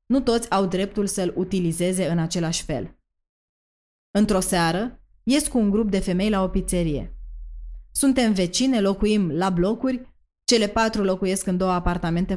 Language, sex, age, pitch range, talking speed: Romanian, female, 20-39, 170-210 Hz, 150 wpm